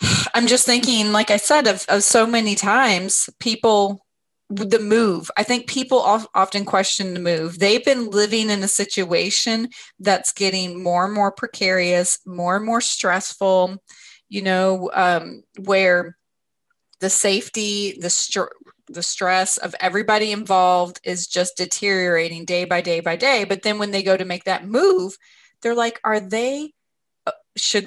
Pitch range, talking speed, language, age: 190-250 Hz, 155 wpm, English, 30-49